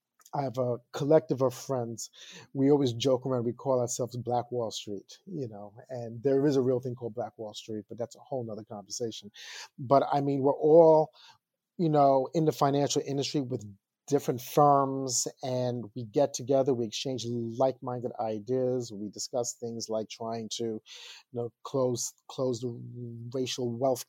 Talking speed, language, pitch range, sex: 170 wpm, English, 120-140 Hz, male